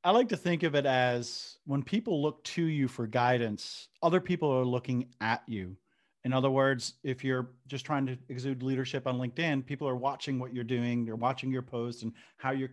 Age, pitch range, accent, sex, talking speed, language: 40-59, 125-145 Hz, American, male, 210 wpm, English